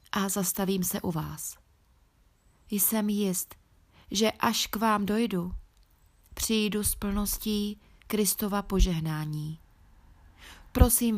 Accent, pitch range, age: native, 165-210 Hz, 30-49